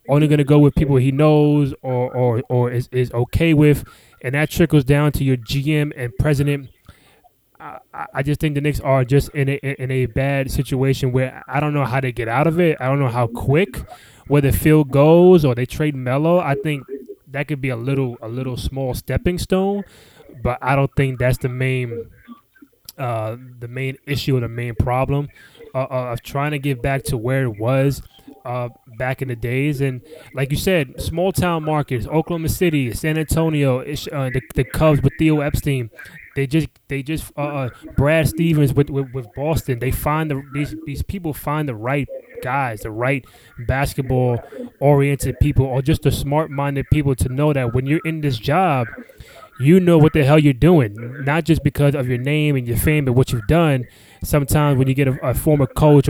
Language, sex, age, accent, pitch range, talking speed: English, male, 20-39, American, 130-150 Hz, 200 wpm